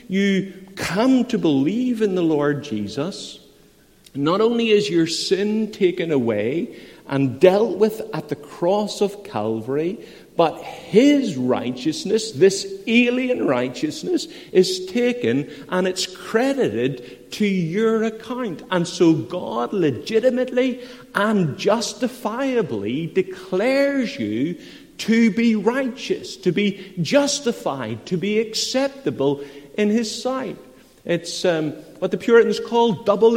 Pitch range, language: 155-240 Hz, English